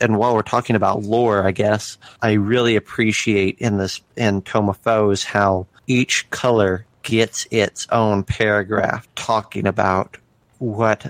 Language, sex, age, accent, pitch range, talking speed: English, male, 30-49, American, 100-115 Hz, 145 wpm